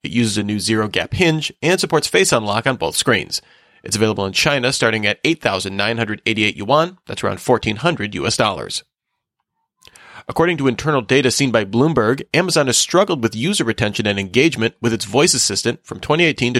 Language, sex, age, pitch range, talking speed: English, male, 30-49, 110-150 Hz, 175 wpm